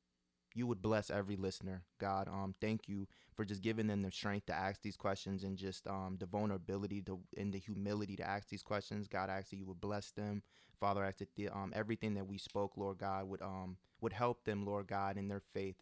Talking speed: 235 wpm